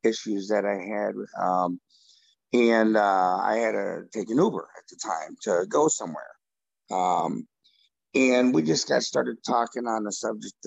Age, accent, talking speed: 50-69, American, 165 wpm